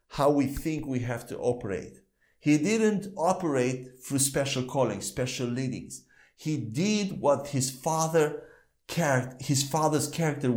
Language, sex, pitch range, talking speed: English, male, 125-165 Hz, 125 wpm